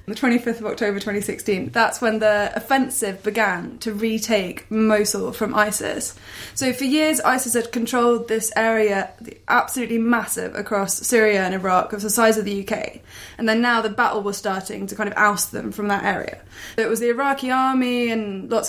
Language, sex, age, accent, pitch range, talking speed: English, female, 20-39, British, 205-250 Hz, 185 wpm